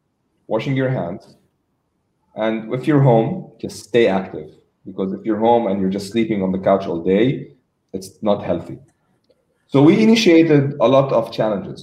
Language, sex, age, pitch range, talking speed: English, male, 20-39, 100-120 Hz, 165 wpm